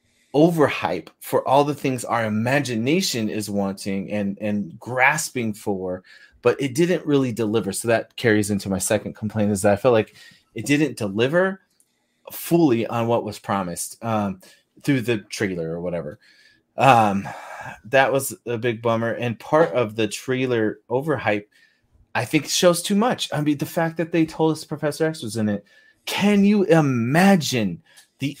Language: English